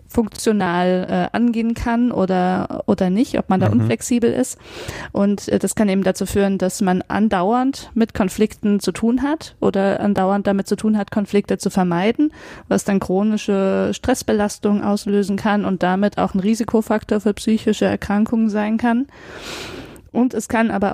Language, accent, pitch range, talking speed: German, German, 185-215 Hz, 160 wpm